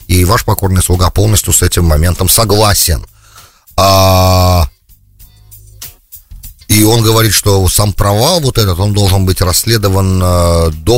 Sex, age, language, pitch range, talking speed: male, 30-49, English, 80-105 Hz, 120 wpm